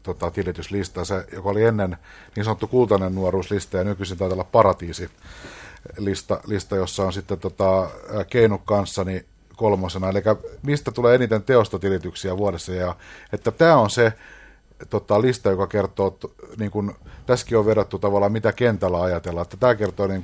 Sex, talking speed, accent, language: male, 135 wpm, native, Finnish